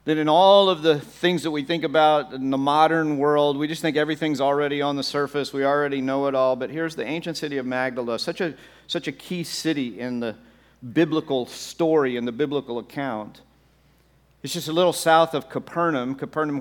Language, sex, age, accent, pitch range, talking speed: English, male, 50-69, American, 125-150 Hz, 200 wpm